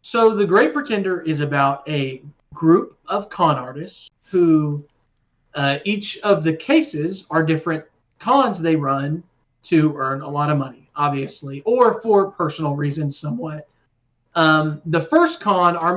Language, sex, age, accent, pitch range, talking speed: English, male, 40-59, American, 145-185 Hz, 145 wpm